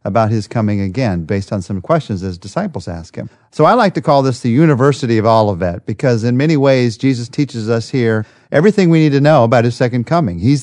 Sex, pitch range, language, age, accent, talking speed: male, 110-145 Hz, English, 50-69, American, 225 wpm